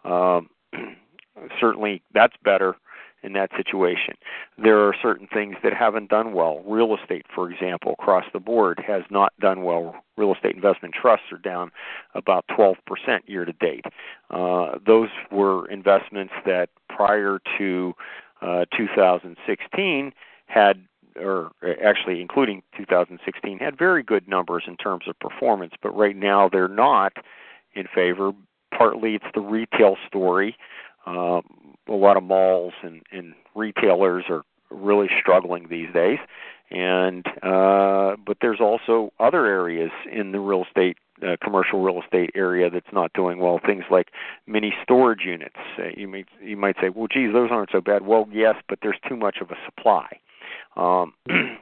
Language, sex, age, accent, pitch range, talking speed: English, male, 50-69, American, 90-105 Hz, 150 wpm